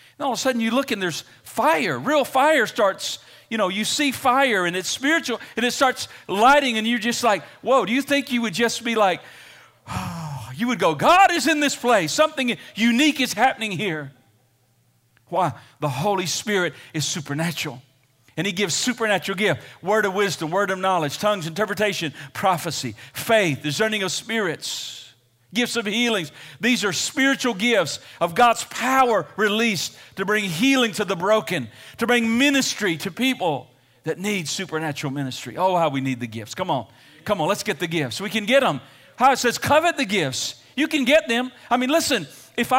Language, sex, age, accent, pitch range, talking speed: English, male, 40-59, American, 150-240 Hz, 190 wpm